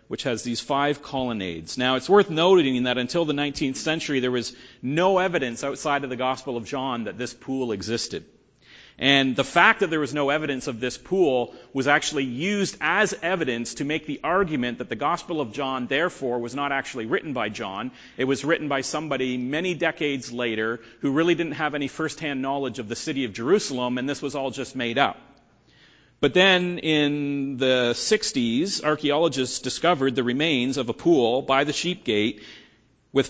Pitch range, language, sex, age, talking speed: 125-155 Hz, English, male, 40-59, 185 wpm